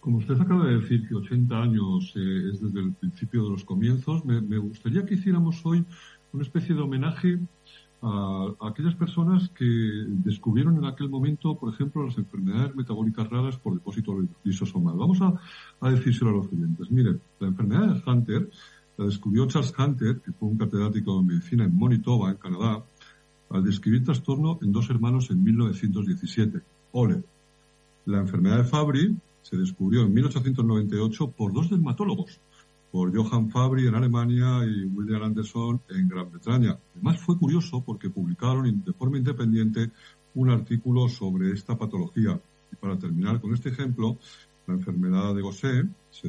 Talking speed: 165 wpm